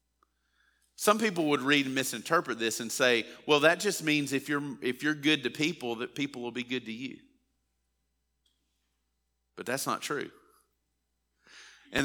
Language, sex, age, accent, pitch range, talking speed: English, male, 40-59, American, 120-165 Hz, 155 wpm